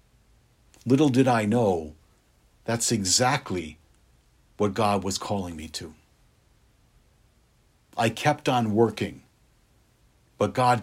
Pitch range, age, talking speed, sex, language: 100-130 Hz, 50-69, 100 wpm, male, English